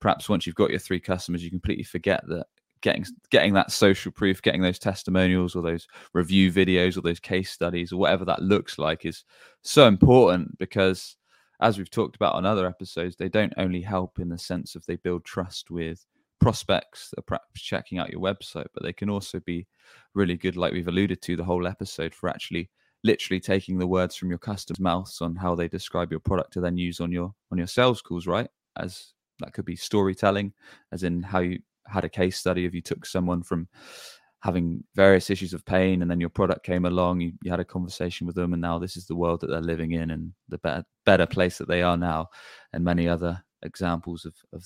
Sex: male